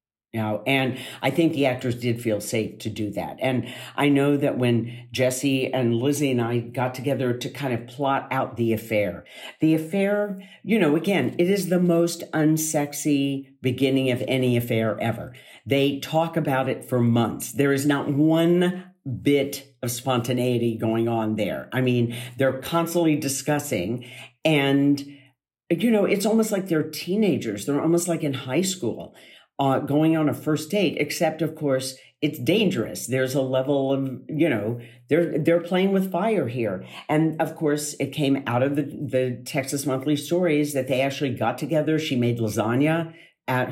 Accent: American